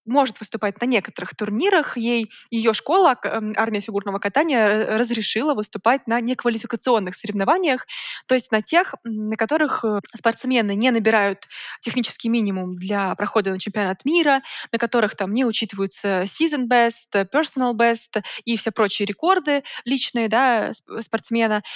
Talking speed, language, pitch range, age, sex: 125 wpm, Russian, 210-250 Hz, 20-39, female